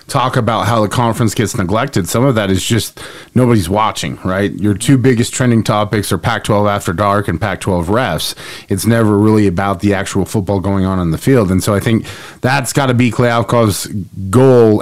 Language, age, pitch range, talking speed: English, 30-49, 105-130 Hz, 200 wpm